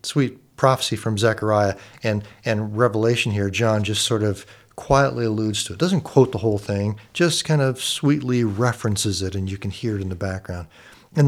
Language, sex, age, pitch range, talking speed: English, male, 50-69, 105-135 Hz, 190 wpm